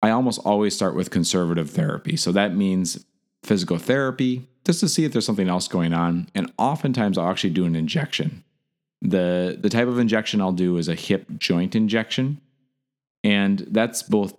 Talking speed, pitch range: 180 wpm, 85-110 Hz